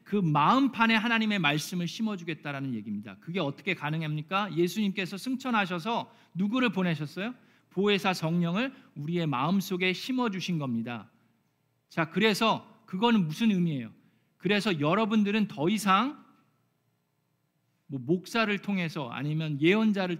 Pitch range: 160-220 Hz